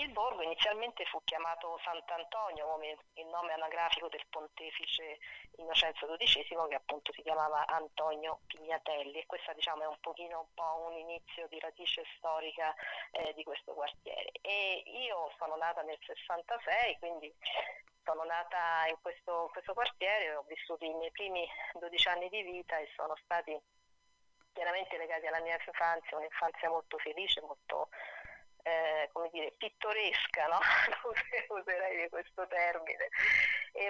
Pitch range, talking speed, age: 160-180 Hz, 140 wpm, 30-49